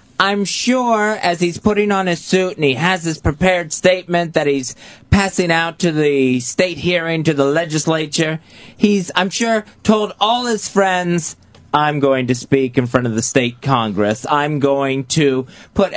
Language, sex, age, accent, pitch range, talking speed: English, male, 30-49, American, 140-185 Hz, 175 wpm